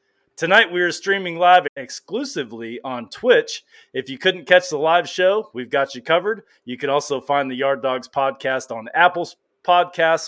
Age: 30-49